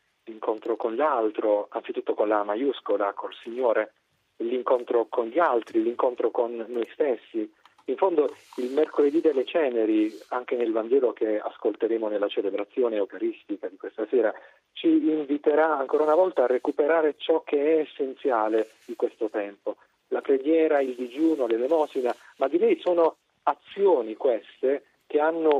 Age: 40-59